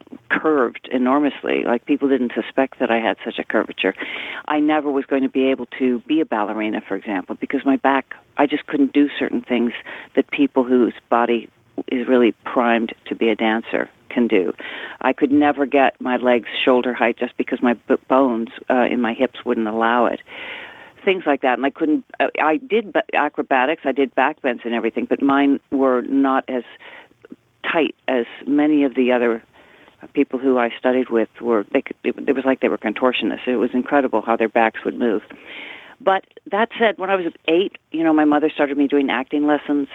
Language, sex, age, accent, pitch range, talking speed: English, female, 50-69, American, 120-150 Hz, 190 wpm